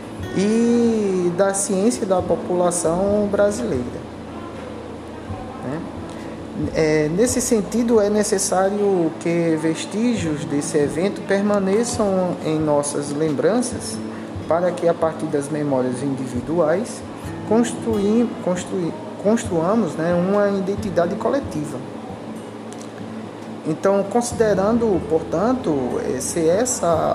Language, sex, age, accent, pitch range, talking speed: Portuguese, male, 20-39, Brazilian, 155-200 Hz, 75 wpm